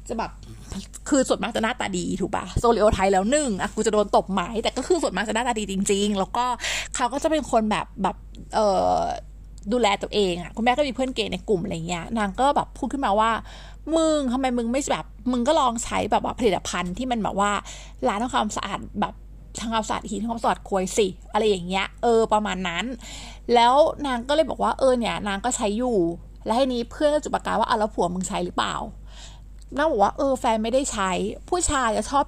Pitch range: 200-255 Hz